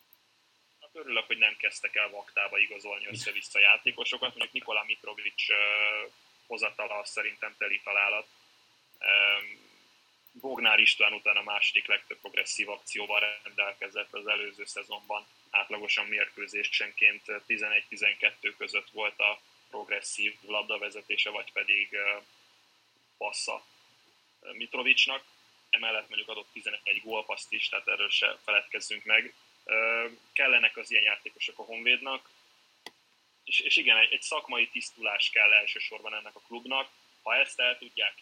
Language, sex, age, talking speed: Hungarian, male, 20-39, 115 wpm